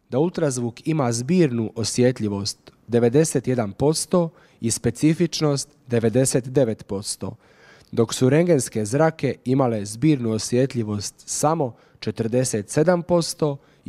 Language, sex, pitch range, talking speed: Croatian, male, 110-150 Hz, 80 wpm